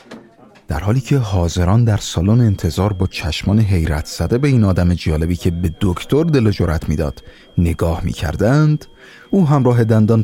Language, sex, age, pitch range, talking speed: Persian, male, 30-49, 90-115 Hz, 150 wpm